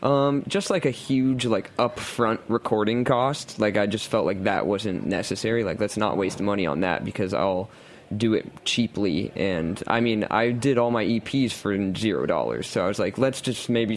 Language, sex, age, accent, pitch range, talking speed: English, male, 20-39, American, 100-125 Hz, 200 wpm